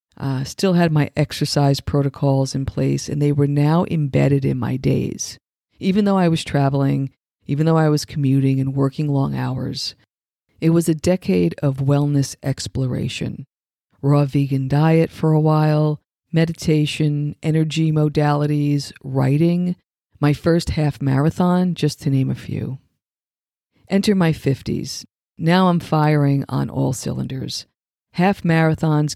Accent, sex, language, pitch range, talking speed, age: American, female, English, 140-160 Hz, 140 wpm, 50-69